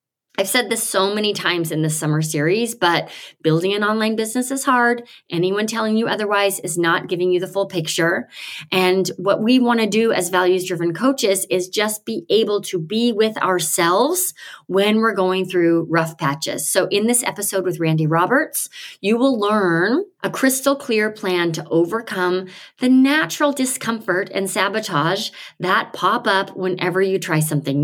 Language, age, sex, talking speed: English, 30-49, female, 170 wpm